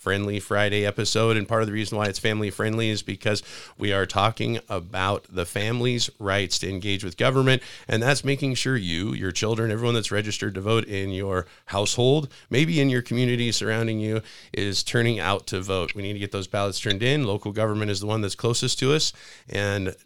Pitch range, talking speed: 100-115 Hz, 205 wpm